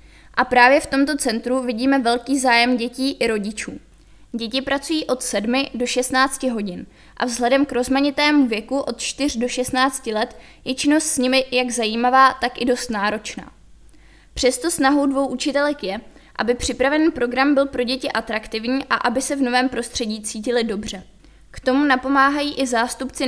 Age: 20-39